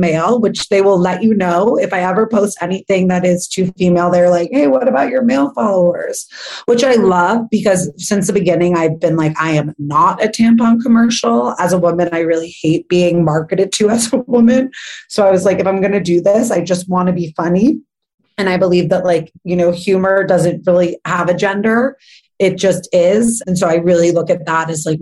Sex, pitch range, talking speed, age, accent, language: female, 175-220 Hz, 225 wpm, 30-49, American, English